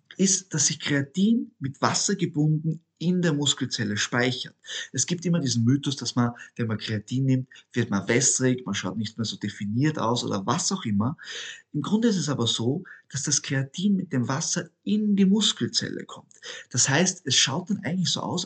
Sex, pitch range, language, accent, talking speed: male, 130-180 Hz, German, German, 195 wpm